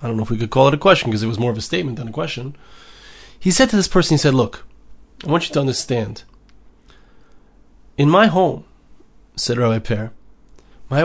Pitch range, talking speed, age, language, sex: 115-160 Hz, 215 wpm, 30-49, English, male